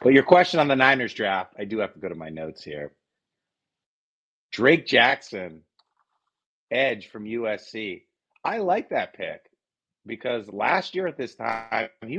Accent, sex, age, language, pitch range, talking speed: American, male, 30-49, English, 115-160 Hz, 160 wpm